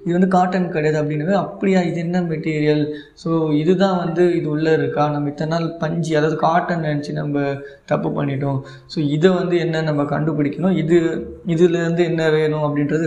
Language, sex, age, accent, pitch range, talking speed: Tamil, male, 20-39, native, 145-175 Hz, 165 wpm